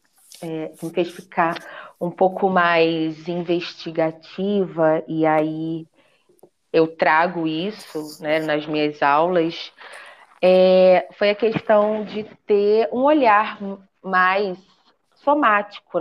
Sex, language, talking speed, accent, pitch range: female, Portuguese, 100 wpm, Brazilian, 170-220 Hz